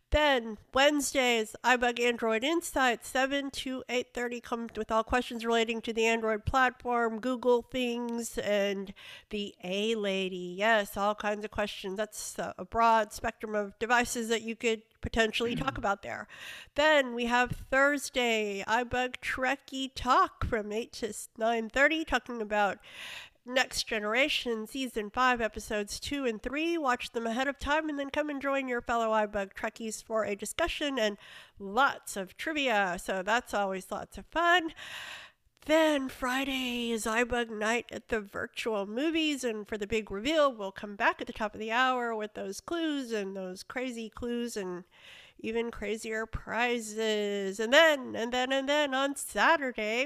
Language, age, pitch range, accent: English, 50-69, 210-260 Hz, American